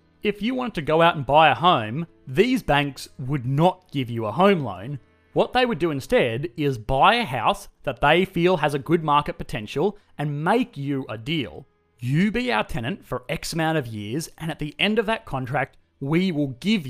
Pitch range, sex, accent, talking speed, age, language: 130-175 Hz, male, Australian, 215 wpm, 30-49, English